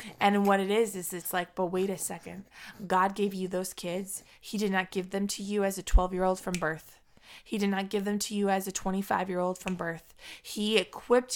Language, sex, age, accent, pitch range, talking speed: English, female, 20-39, American, 185-215 Hz, 220 wpm